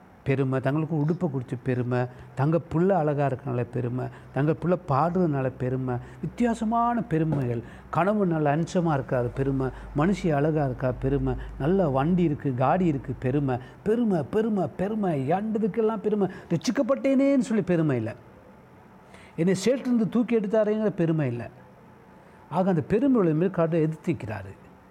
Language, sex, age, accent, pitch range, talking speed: Tamil, male, 60-79, native, 135-185 Hz, 125 wpm